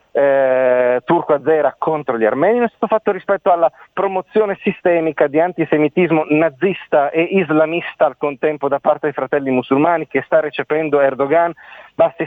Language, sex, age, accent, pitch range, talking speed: Italian, male, 40-59, native, 135-170 Hz, 150 wpm